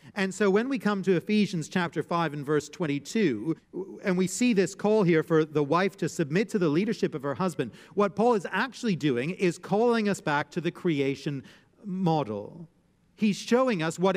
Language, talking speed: English, 195 wpm